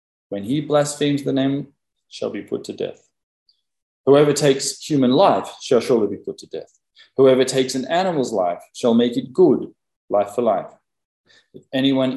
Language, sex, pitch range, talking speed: English, male, 110-150 Hz, 170 wpm